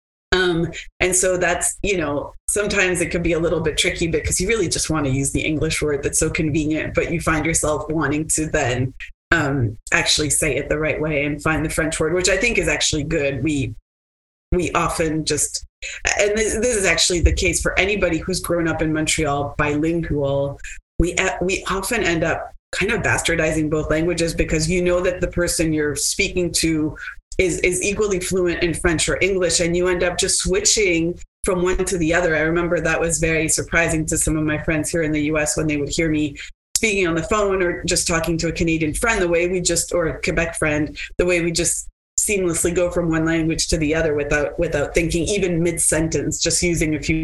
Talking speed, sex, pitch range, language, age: 215 wpm, female, 155-175 Hz, English, 30-49